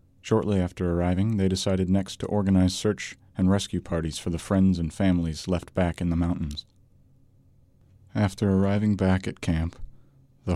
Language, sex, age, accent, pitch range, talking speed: English, male, 40-59, American, 85-105 Hz, 160 wpm